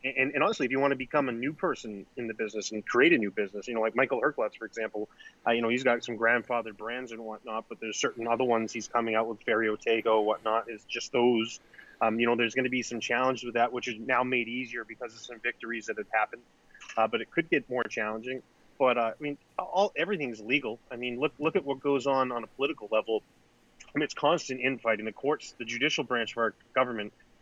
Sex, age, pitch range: male, 30-49, 110-125 Hz